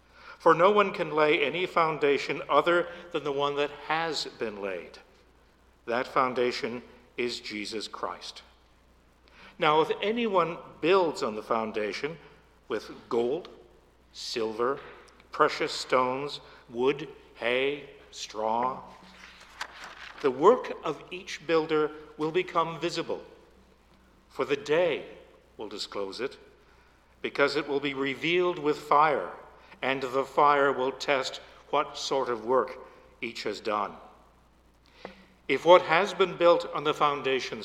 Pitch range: 125-185 Hz